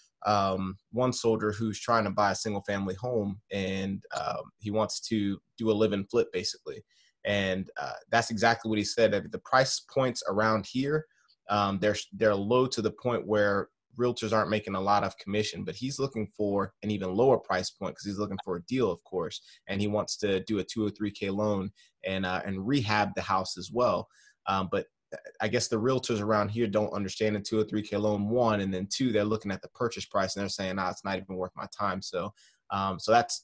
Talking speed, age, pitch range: 230 wpm, 20-39, 95-115 Hz